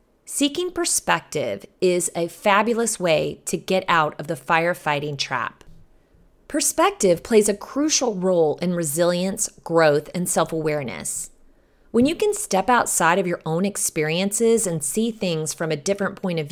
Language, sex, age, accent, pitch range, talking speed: English, female, 30-49, American, 160-230 Hz, 145 wpm